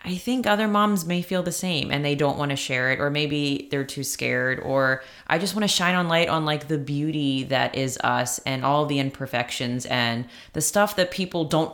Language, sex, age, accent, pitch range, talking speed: English, female, 20-39, American, 125-160 Hz, 230 wpm